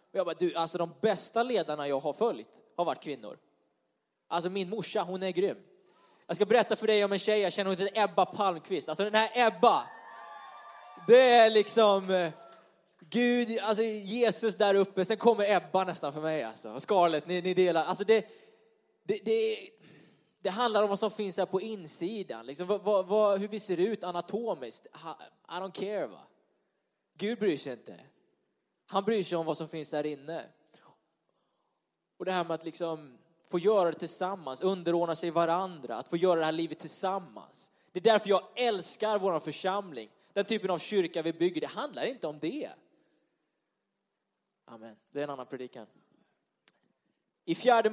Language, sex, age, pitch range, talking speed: Swedish, male, 20-39, 170-215 Hz, 180 wpm